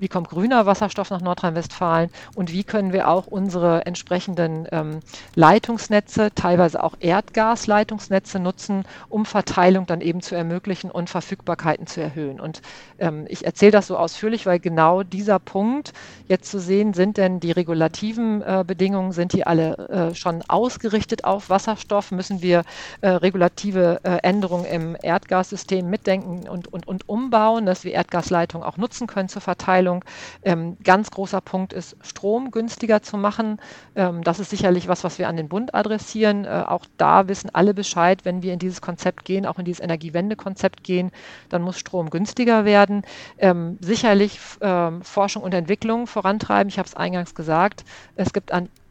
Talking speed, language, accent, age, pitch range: 160 wpm, German, German, 40-59, 175-205 Hz